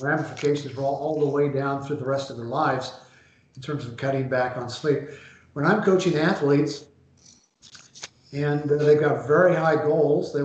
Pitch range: 140-155 Hz